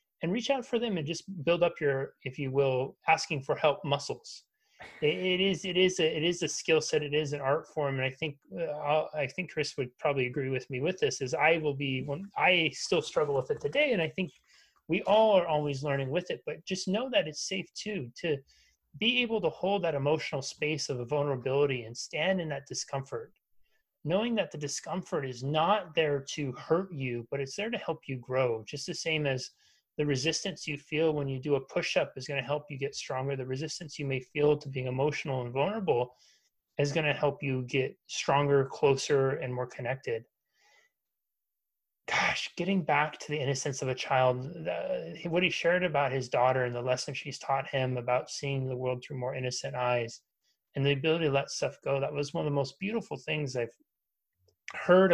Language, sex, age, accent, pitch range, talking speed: English, male, 30-49, American, 135-170 Hz, 215 wpm